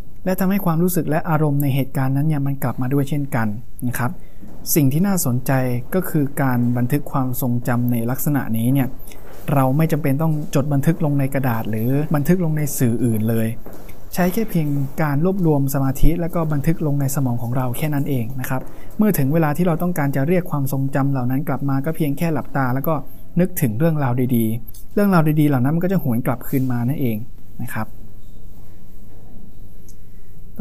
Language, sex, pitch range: Thai, male, 120-160 Hz